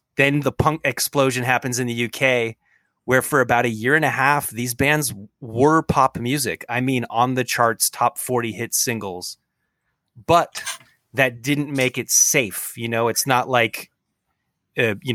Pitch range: 110-130 Hz